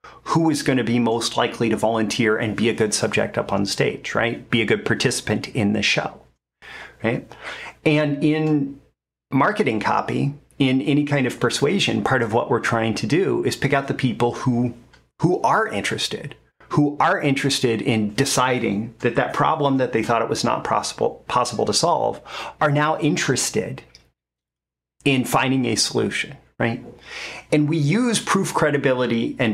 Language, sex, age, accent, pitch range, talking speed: English, male, 40-59, American, 115-145 Hz, 170 wpm